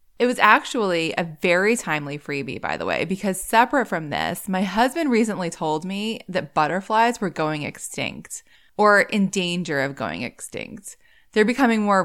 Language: English